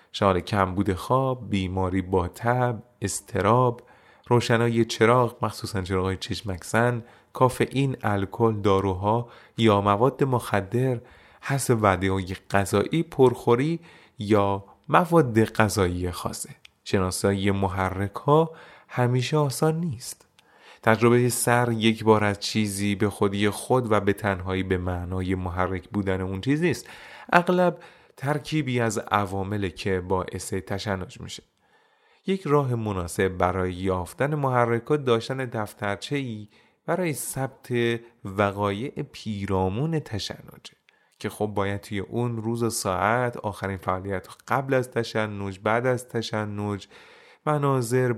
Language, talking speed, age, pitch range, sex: Persian, 110 wpm, 30-49, 100-120 Hz, male